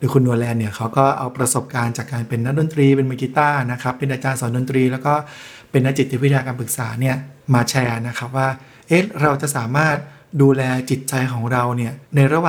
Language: Thai